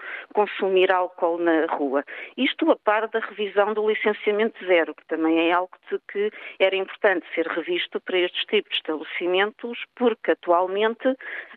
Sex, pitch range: female, 170-220 Hz